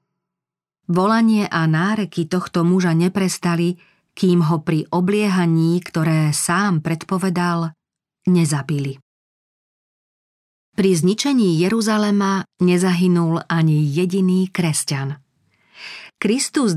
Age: 40-59